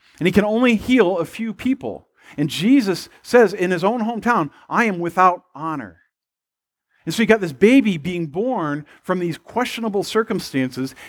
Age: 40-59